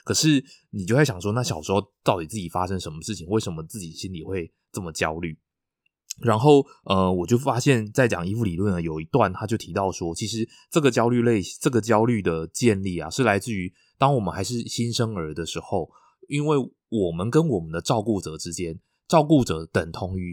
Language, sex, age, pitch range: Chinese, male, 20-39, 90-120 Hz